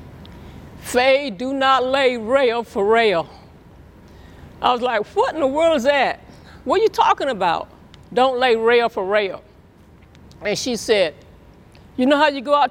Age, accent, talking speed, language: 50-69, American, 165 wpm, English